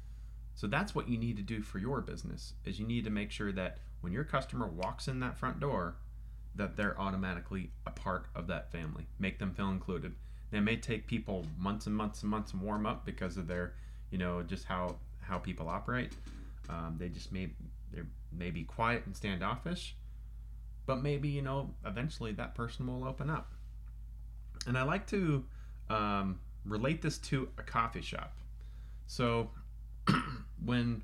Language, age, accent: English, 30-49, American